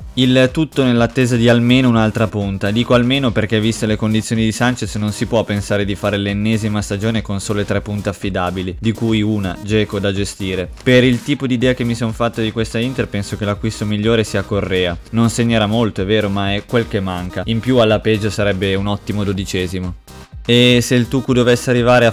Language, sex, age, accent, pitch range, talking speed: Italian, male, 20-39, native, 100-115 Hz, 210 wpm